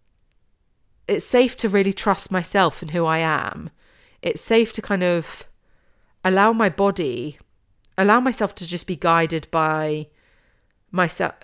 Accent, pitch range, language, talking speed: British, 155-185 Hz, English, 135 wpm